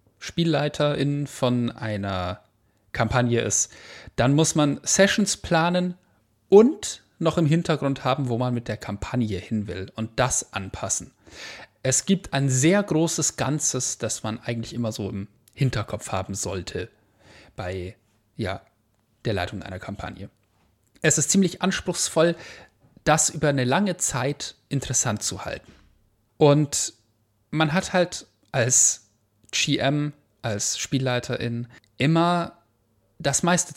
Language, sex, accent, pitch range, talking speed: German, male, German, 105-145 Hz, 125 wpm